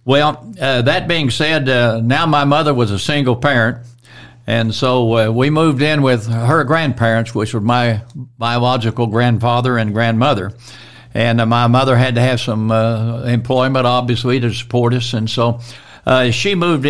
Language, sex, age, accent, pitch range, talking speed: English, male, 60-79, American, 115-140 Hz, 170 wpm